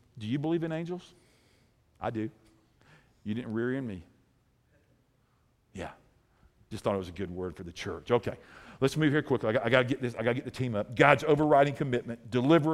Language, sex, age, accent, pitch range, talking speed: English, male, 50-69, American, 130-190 Hz, 215 wpm